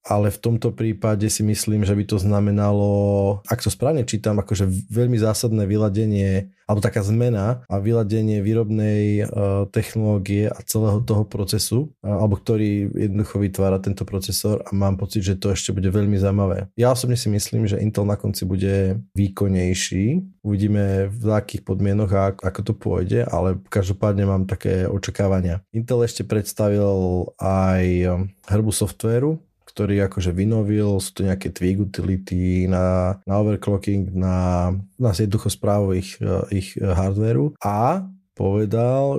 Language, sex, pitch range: Slovak, male, 100-110 Hz